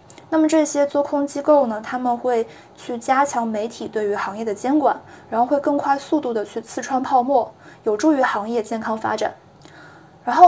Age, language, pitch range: 20-39, Chinese, 230-280 Hz